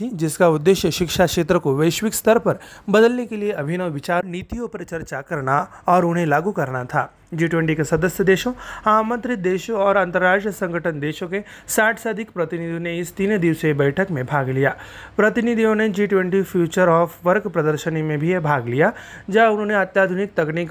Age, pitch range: 30-49, 160-200 Hz